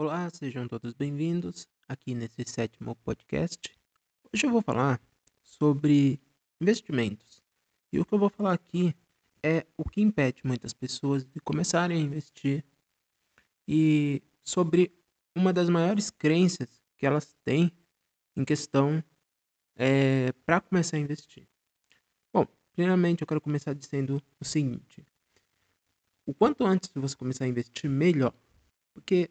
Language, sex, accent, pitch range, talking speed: Portuguese, male, Brazilian, 130-170 Hz, 130 wpm